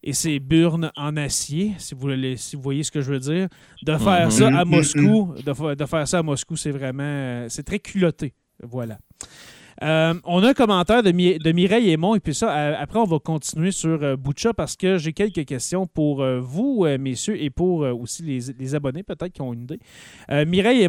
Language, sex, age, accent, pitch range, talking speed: French, male, 30-49, Canadian, 145-185 Hz, 215 wpm